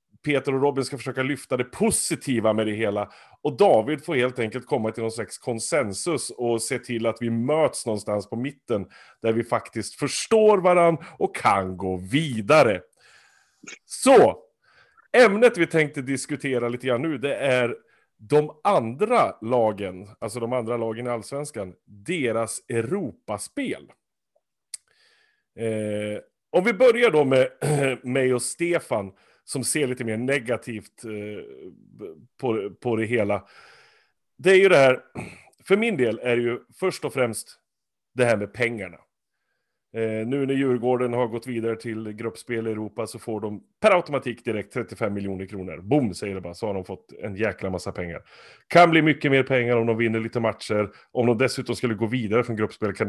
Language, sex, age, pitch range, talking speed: Swedish, male, 30-49, 110-140 Hz, 165 wpm